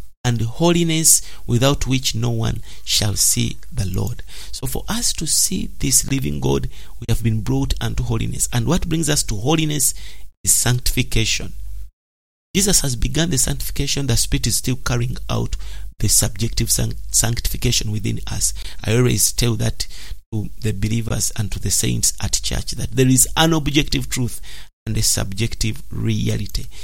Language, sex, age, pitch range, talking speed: English, male, 50-69, 105-130 Hz, 160 wpm